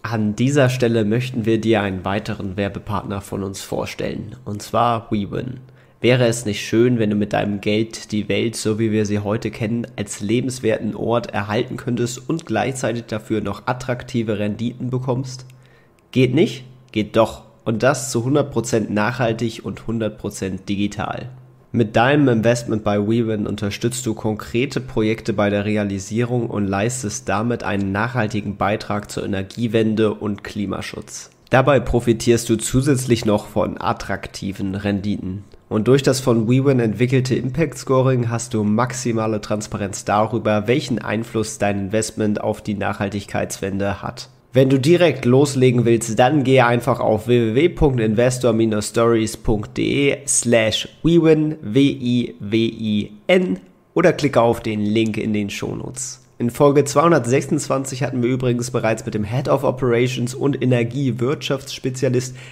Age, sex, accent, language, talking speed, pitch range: 30-49, male, German, German, 135 wpm, 105-130 Hz